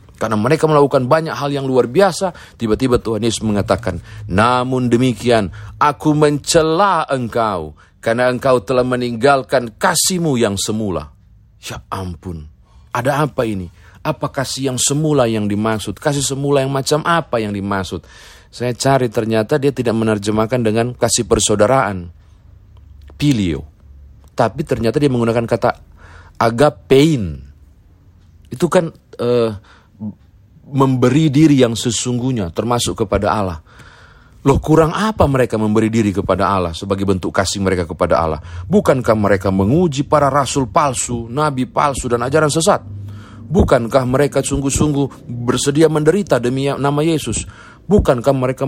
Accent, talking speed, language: native, 125 wpm, Indonesian